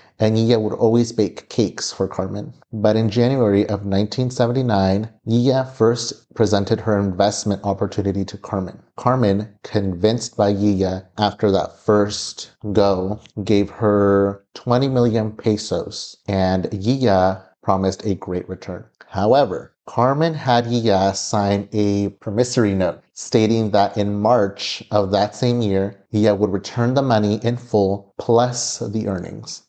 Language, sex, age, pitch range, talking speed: English, male, 30-49, 100-115 Hz, 135 wpm